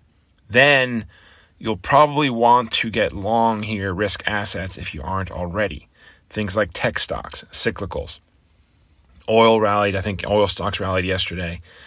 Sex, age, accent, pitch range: male, 40-59, American, 85-120 Hz